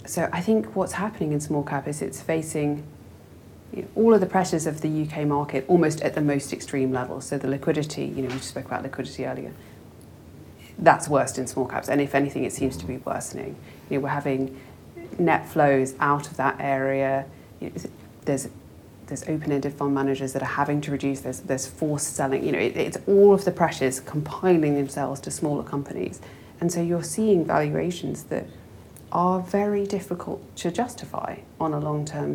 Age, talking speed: 30-49, 185 wpm